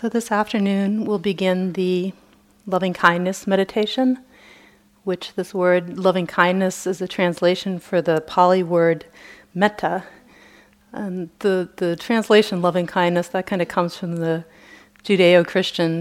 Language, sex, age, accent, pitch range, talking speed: English, female, 40-59, American, 165-195 Hz, 120 wpm